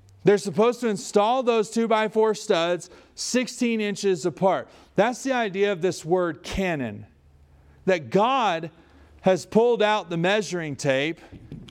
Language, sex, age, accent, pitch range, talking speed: English, male, 40-59, American, 170-220 Hz, 140 wpm